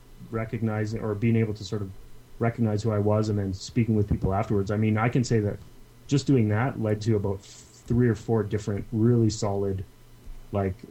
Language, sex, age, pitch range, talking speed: English, male, 30-49, 100-120 Hz, 200 wpm